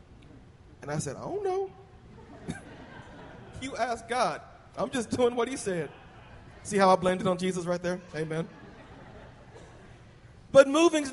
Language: English